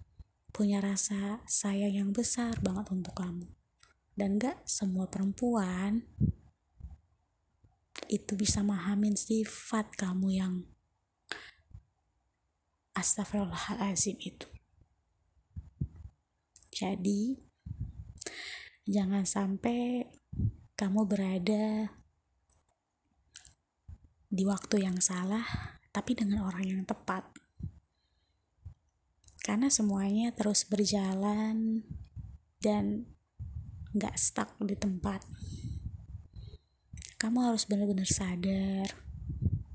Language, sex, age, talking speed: Indonesian, female, 20-39, 70 wpm